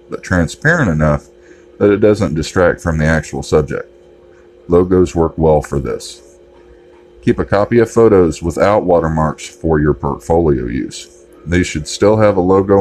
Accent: American